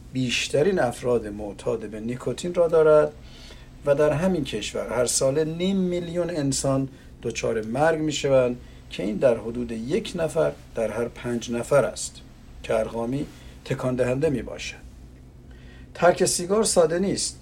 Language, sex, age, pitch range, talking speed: Persian, male, 50-69, 110-150 Hz, 130 wpm